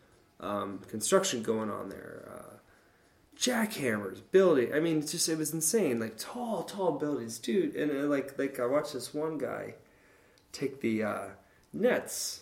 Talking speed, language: 160 wpm, English